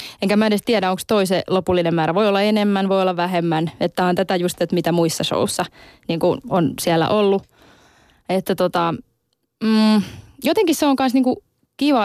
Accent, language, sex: native, Finnish, female